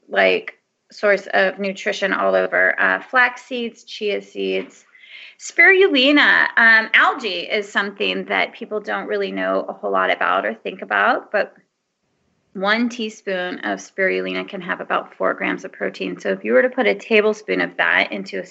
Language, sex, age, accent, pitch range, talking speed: English, female, 30-49, American, 185-250 Hz, 170 wpm